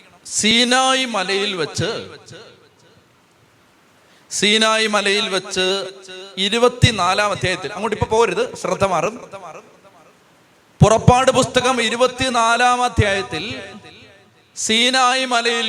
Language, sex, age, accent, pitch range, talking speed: Malayalam, male, 30-49, native, 195-255 Hz, 55 wpm